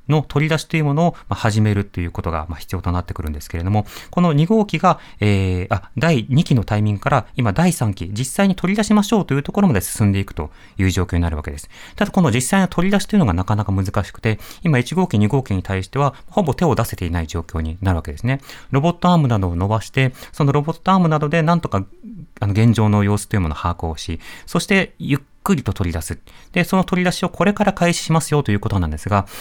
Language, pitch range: Japanese, 95-160 Hz